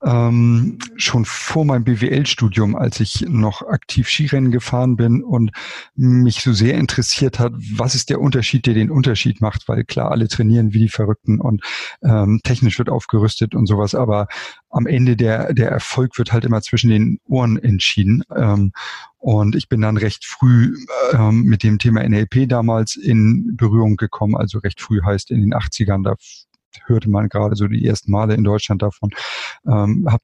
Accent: German